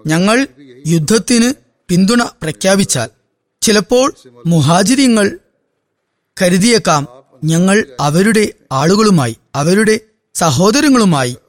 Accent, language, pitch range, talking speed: native, Malayalam, 145-210 Hz, 65 wpm